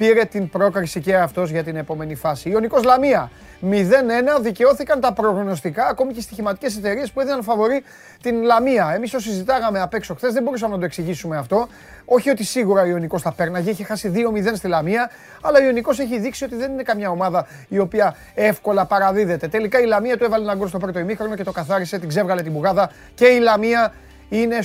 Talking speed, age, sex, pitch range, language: 200 wpm, 30-49, male, 165-225 Hz, Greek